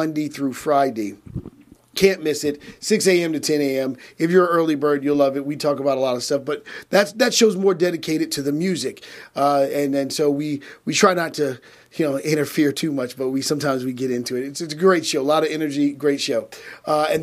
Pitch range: 140-175 Hz